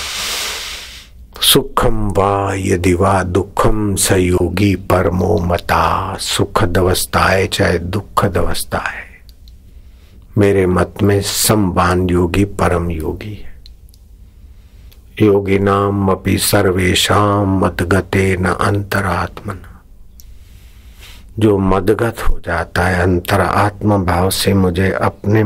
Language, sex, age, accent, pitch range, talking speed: Hindi, male, 50-69, native, 85-95 Hz, 75 wpm